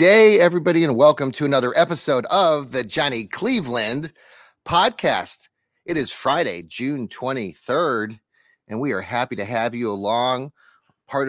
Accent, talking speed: American, 140 wpm